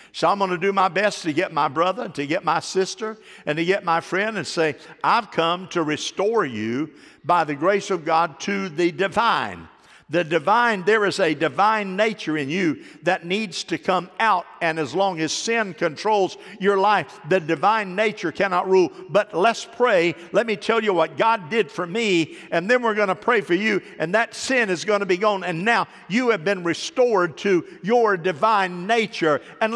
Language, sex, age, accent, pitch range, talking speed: English, male, 50-69, American, 165-220 Hz, 205 wpm